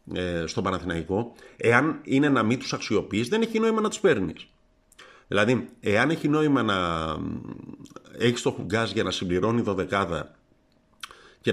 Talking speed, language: 140 wpm, Greek